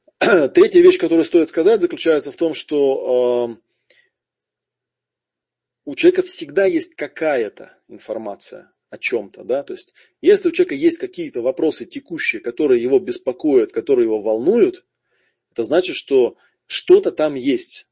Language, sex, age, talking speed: Russian, male, 20-39, 135 wpm